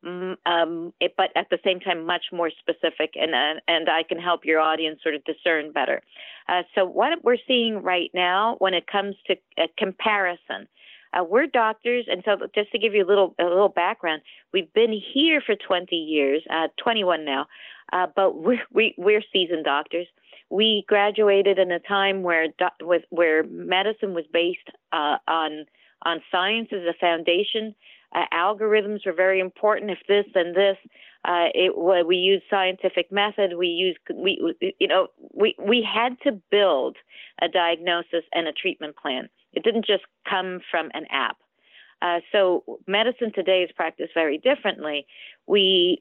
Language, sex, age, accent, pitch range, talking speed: English, female, 40-59, American, 170-205 Hz, 170 wpm